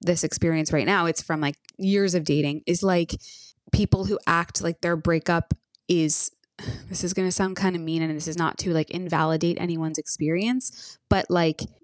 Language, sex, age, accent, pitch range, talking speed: English, female, 20-39, American, 160-195 Hz, 195 wpm